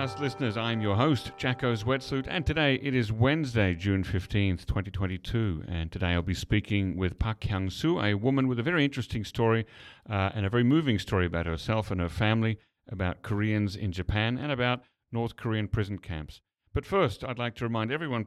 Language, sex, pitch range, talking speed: English, male, 100-125 Hz, 185 wpm